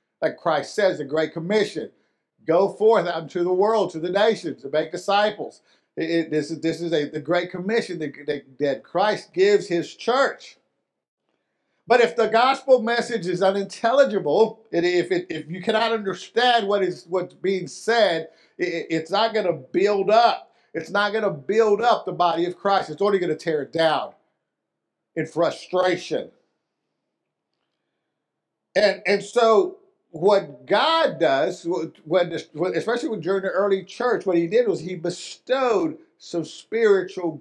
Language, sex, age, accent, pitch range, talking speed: English, male, 50-69, American, 160-225 Hz, 150 wpm